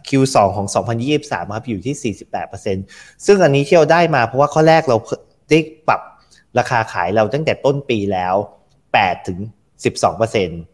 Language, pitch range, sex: Thai, 105-145 Hz, male